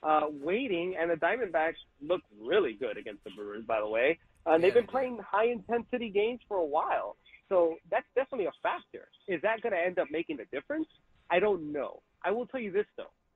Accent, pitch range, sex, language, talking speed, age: American, 150-190 Hz, male, English, 210 wpm, 30-49